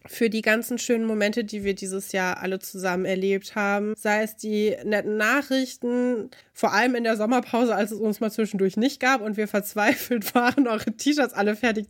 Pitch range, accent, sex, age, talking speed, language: 200-245 Hz, German, female, 20-39, 190 wpm, German